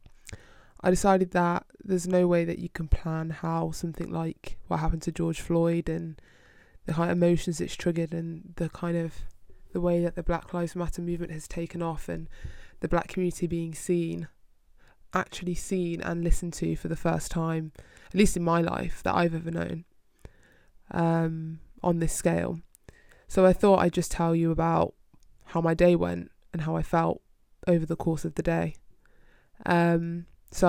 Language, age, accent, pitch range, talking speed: English, 20-39, British, 160-175 Hz, 175 wpm